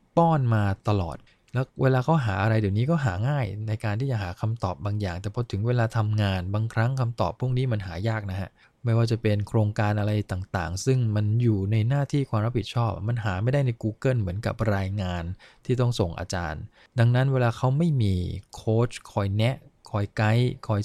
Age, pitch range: 20-39, 100-120 Hz